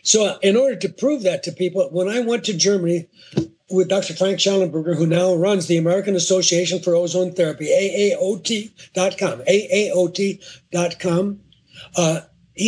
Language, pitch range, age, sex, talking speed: English, 175-210 Hz, 60-79, male, 155 wpm